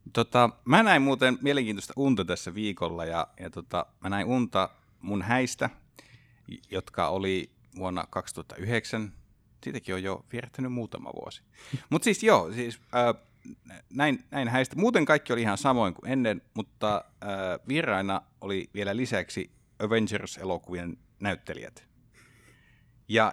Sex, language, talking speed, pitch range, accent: male, Finnish, 125 wpm, 95-120 Hz, native